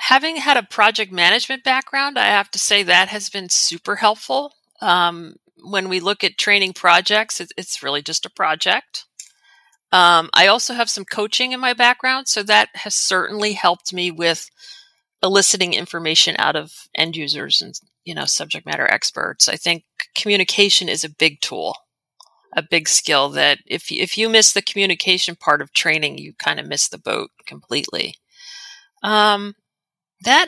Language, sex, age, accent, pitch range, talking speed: English, female, 40-59, American, 175-240 Hz, 165 wpm